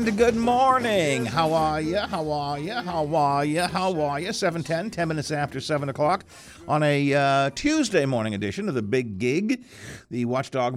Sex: male